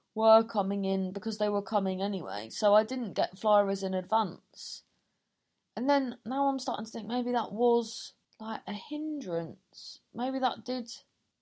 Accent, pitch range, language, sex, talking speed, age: British, 180-240 Hz, English, female, 165 wpm, 20-39